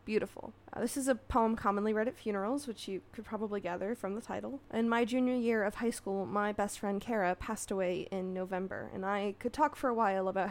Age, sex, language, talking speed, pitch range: 20-39, female, English, 235 wpm, 190-235 Hz